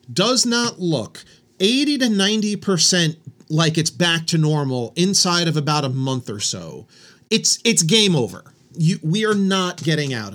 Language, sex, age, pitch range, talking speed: English, male, 30-49, 160-195 Hz, 160 wpm